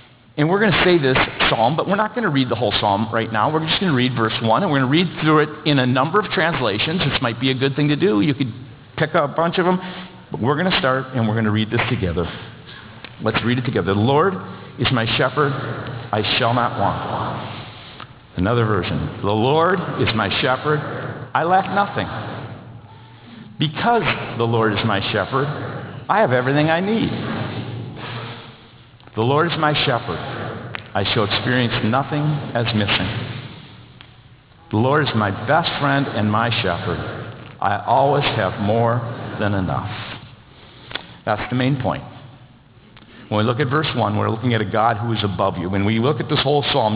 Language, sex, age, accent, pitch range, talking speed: English, male, 50-69, American, 110-135 Hz, 195 wpm